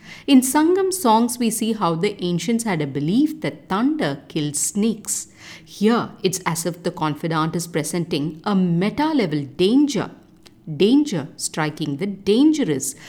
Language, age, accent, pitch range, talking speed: English, 50-69, Indian, 160-235 Hz, 140 wpm